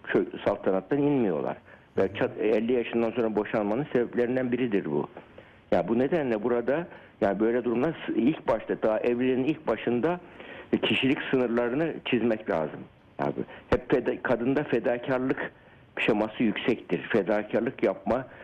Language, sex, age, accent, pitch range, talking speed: Turkish, male, 60-79, native, 100-125 Hz, 125 wpm